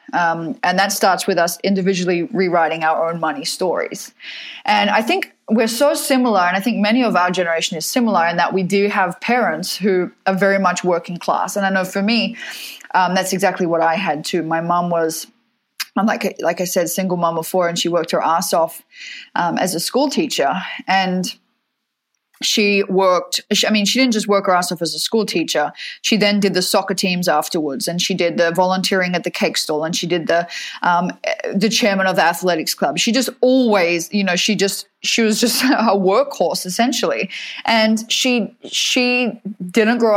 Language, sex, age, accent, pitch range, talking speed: English, female, 20-39, Australian, 175-220 Hz, 200 wpm